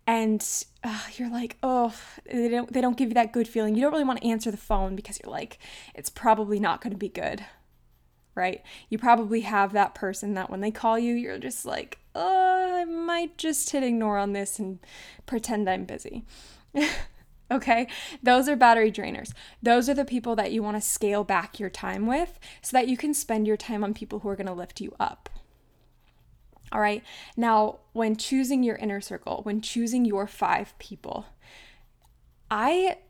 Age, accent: 10-29, American